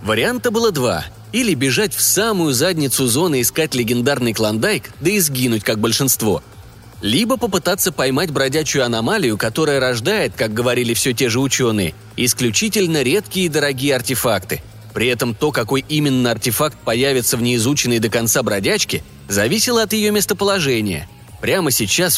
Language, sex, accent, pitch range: Russian, male, native, 110-170 Hz